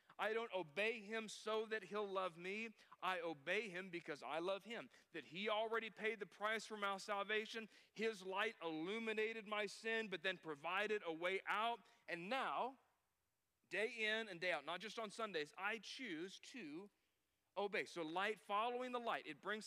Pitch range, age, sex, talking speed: 185-230 Hz, 40-59, male, 175 wpm